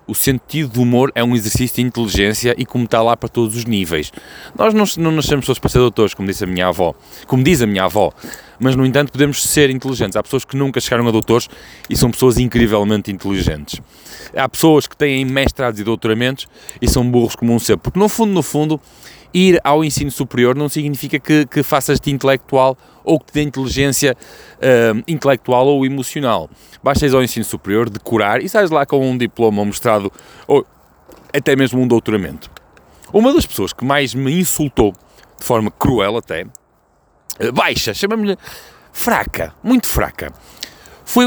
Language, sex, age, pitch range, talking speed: Portuguese, male, 20-39, 115-155 Hz, 180 wpm